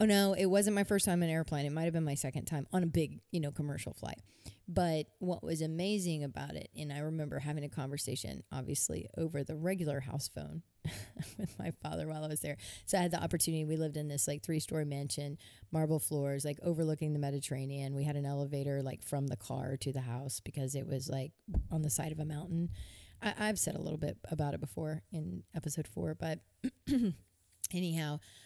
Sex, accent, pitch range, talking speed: female, American, 140-165 Hz, 215 wpm